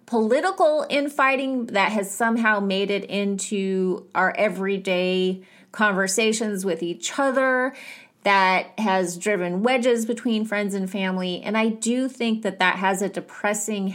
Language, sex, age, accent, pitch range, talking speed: English, female, 30-49, American, 195-250 Hz, 135 wpm